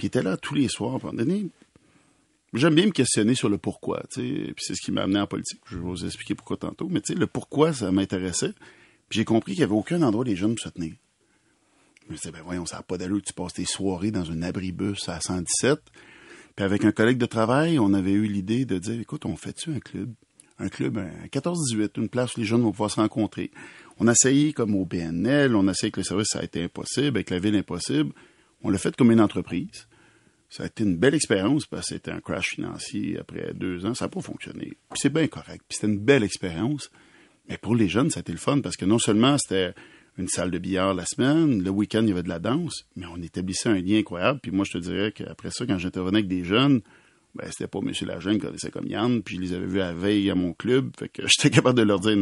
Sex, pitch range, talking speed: male, 90-115 Hz, 250 wpm